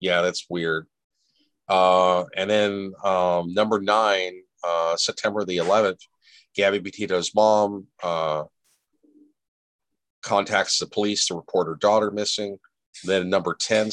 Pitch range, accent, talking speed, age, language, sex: 85-105 Hz, American, 120 wpm, 40-59, English, male